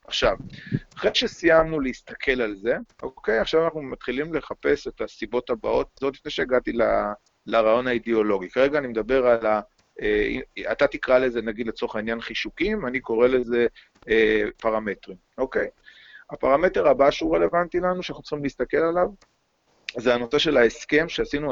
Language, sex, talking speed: Hebrew, male, 145 wpm